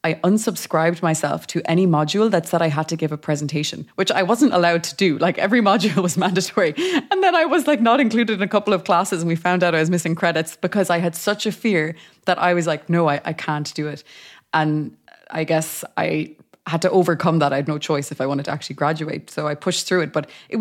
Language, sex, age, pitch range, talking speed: English, female, 20-39, 150-180 Hz, 250 wpm